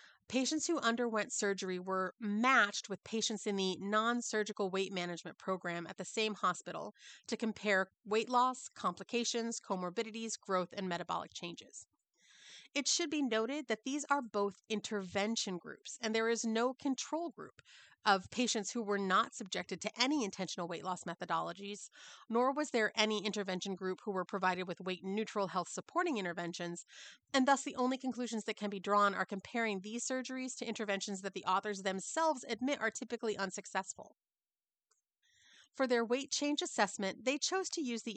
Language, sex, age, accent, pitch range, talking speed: English, female, 30-49, American, 195-250 Hz, 160 wpm